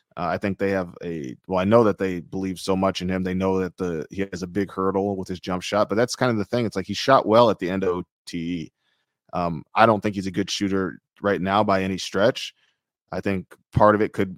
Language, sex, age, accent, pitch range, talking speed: English, male, 20-39, American, 90-100 Hz, 265 wpm